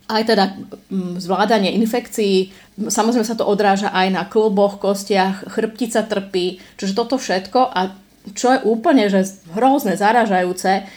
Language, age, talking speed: Slovak, 30-49, 130 wpm